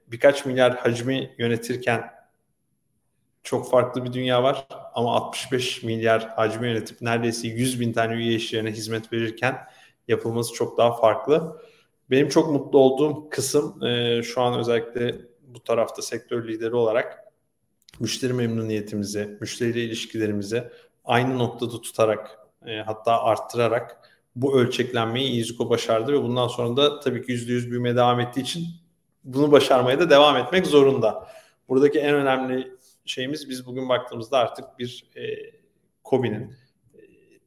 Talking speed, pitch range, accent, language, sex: 130 wpm, 115-130 Hz, native, Turkish, male